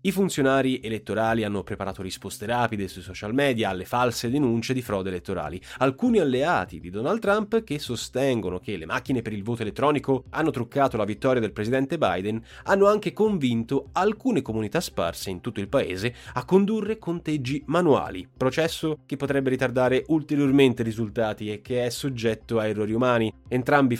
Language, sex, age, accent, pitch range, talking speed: Italian, male, 30-49, native, 105-140 Hz, 165 wpm